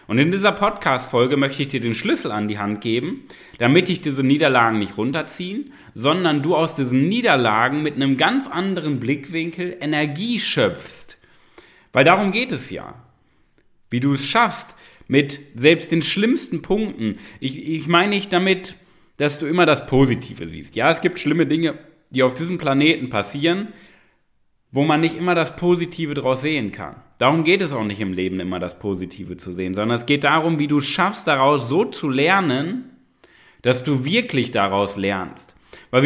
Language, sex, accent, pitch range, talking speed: German, male, German, 130-175 Hz, 175 wpm